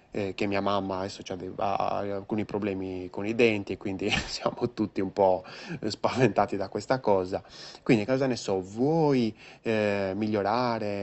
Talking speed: 145 wpm